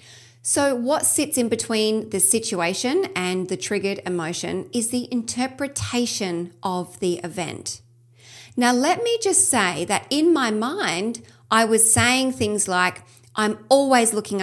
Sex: female